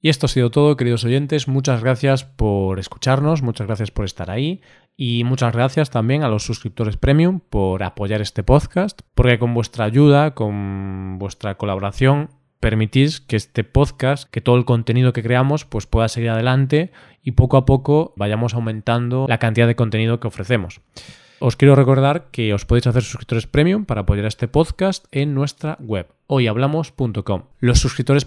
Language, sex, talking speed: Spanish, male, 170 wpm